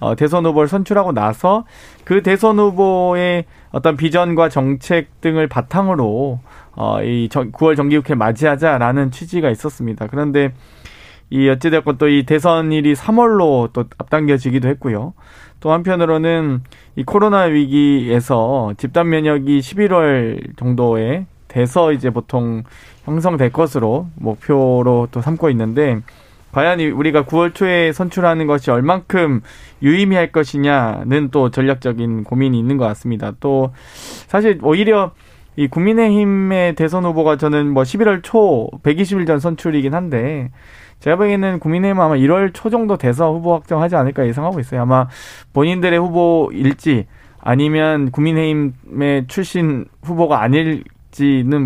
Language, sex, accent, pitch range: Korean, male, native, 130-170 Hz